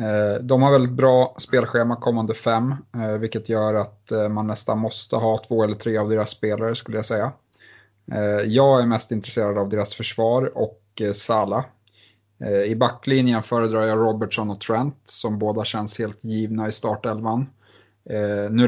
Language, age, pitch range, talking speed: Swedish, 30-49, 105-115 Hz, 150 wpm